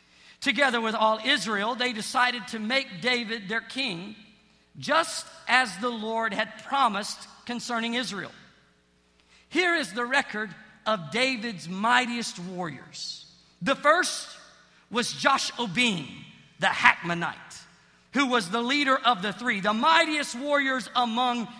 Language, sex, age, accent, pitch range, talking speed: English, male, 50-69, American, 195-280 Hz, 125 wpm